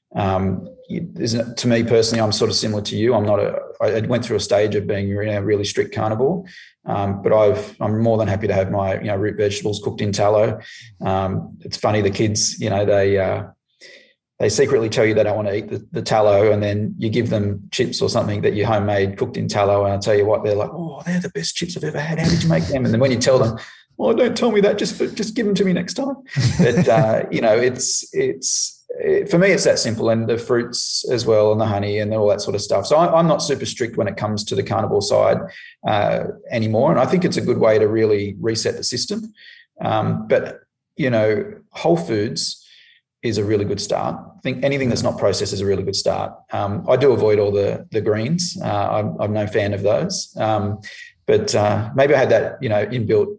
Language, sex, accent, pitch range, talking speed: English, male, Australian, 105-150 Hz, 245 wpm